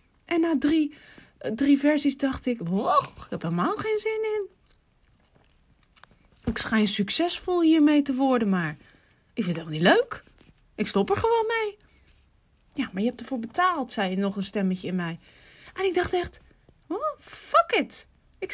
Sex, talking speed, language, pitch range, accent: female, 175 wpm, Dutch, 180-260 Hz, Dutch